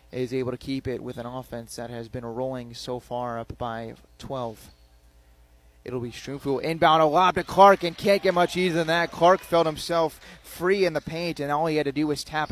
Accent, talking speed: American, 225 wpm